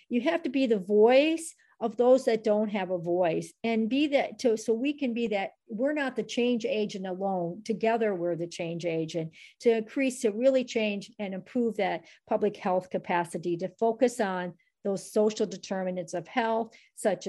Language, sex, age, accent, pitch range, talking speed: English, female, 50-69, American, 180-225 Hz, 180 wpm